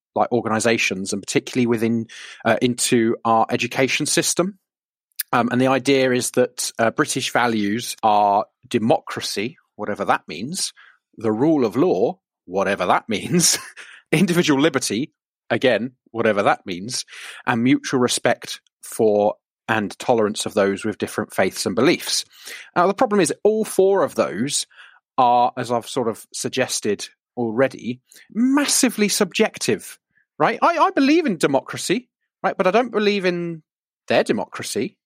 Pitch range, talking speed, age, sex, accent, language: 120-185 Hz, 140 wpm, 40-59, male, British, English